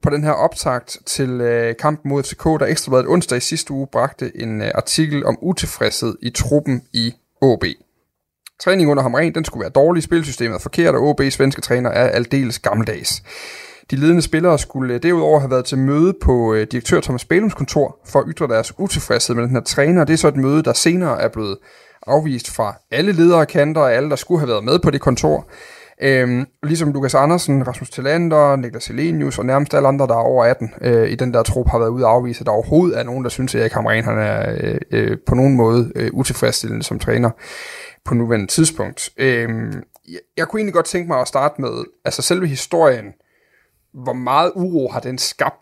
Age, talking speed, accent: 30-49, 205 wpm, native